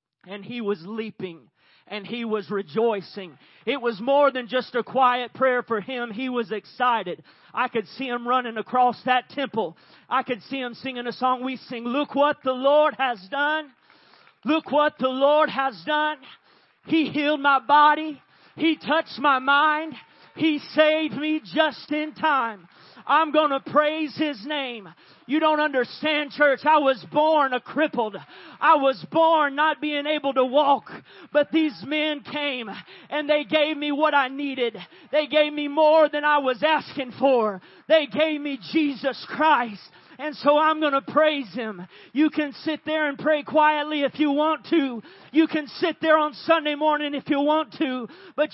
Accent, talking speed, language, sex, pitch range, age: American, 175 wpm, English, male, 245-305 Hz, 40-59